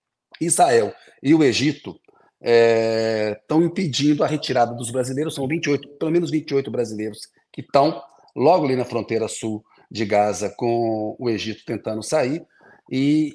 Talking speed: 145 wpm